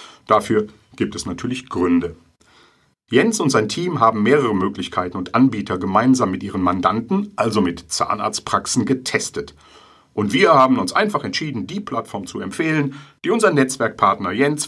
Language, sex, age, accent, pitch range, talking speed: German, male, 50-69, German, 95-130 Hz, 145 wpm